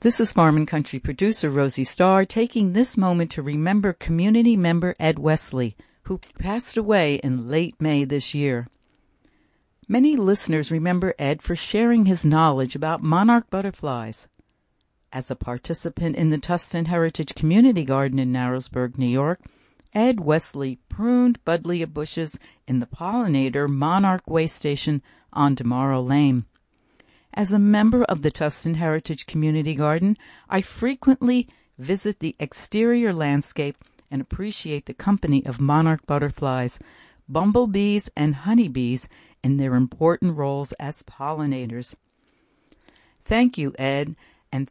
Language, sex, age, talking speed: English, female, 60-79, 130 wpm